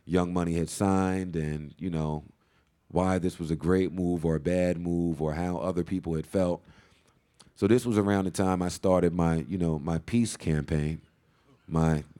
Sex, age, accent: male, 30-49, American